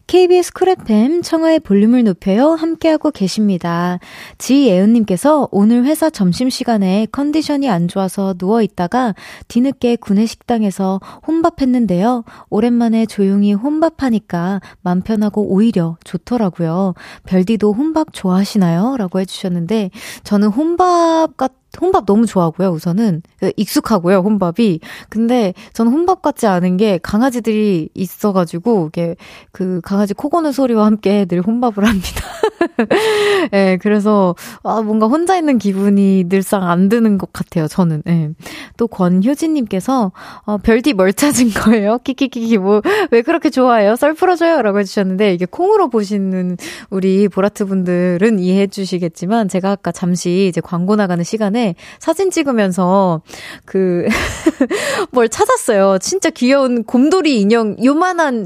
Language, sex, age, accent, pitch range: Korean, female, 20-39, native, 190-265 Hz